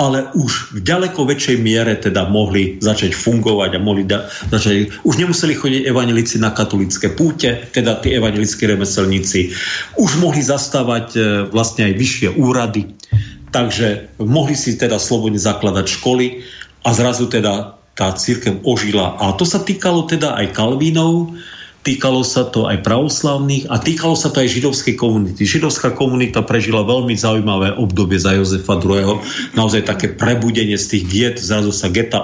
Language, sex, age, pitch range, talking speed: Slovak, male, 50-69, 100-125 Hz, 150 wpm